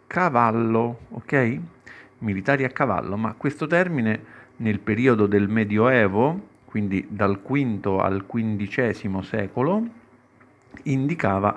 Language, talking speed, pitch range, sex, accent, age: Italian, 100 wpm, 95-125 Hz, male, native, 50-69